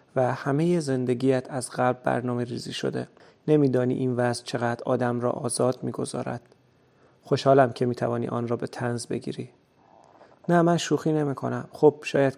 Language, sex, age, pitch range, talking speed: Persian, male, 30-49, 120-135 Hz, 145 wpm